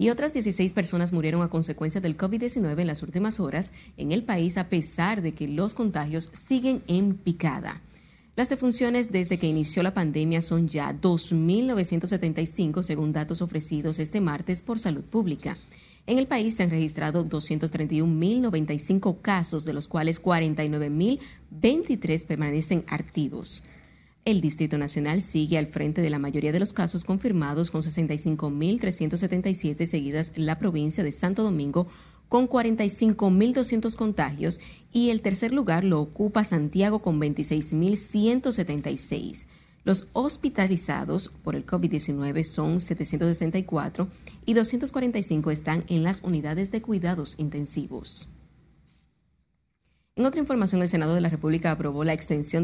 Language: Spanish